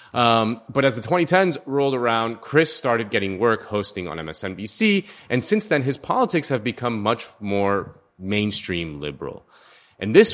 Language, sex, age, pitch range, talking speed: English, male, 30-49, 100-140 Hz, 155 wpm